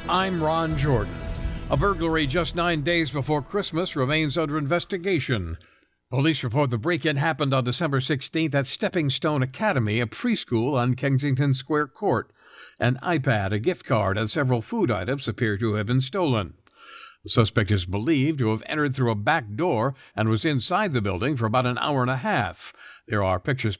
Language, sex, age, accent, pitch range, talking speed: English, male, 60-79, American, 120-160 Hz, 180 wpm